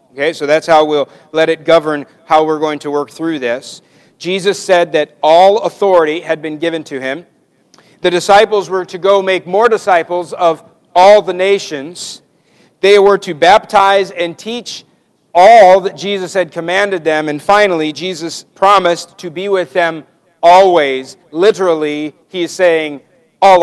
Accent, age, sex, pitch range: American, 50-69, male, 155-190 Hz